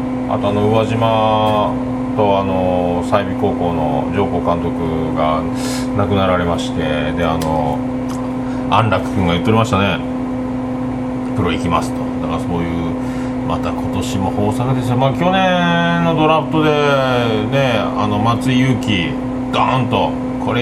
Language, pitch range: Japanese, 115-130 Hz